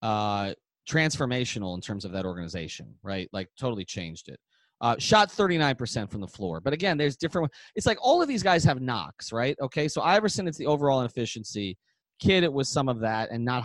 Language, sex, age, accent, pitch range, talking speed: English, male, 30-49, American, 105-150 Hz, 205 wpm